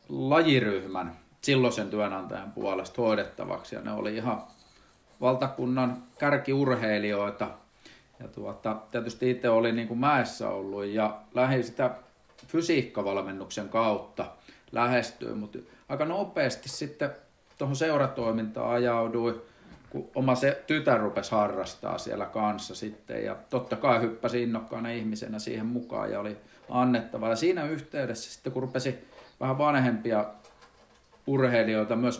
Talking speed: 110 wpm